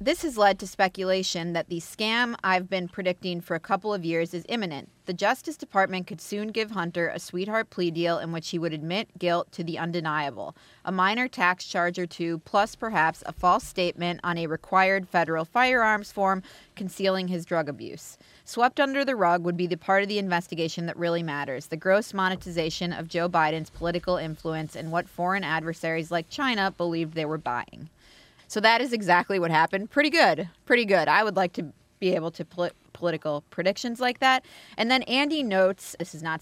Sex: female